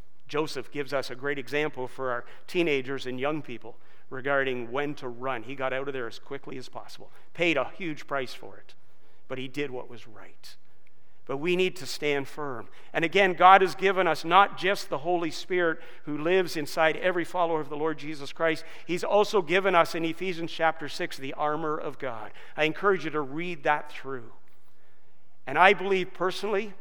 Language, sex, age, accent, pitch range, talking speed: English, male, 50-69, American, 140-175 Hz, 195 wpm